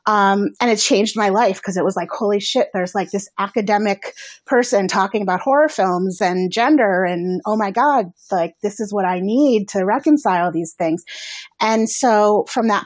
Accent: American